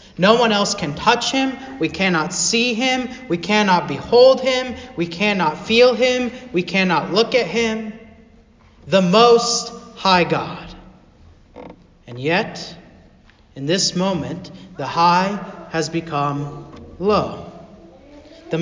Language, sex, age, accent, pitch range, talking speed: English, male, 40-59, American, 155-195 Hz, 120 wpm